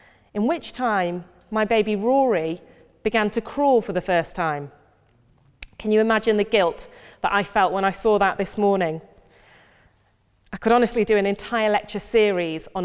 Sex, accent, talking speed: female, British, 170 wpm